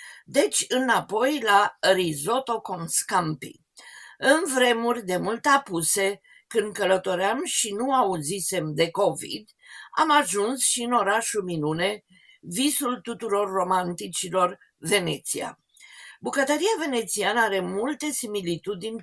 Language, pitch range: Romanian, 185-265 Hz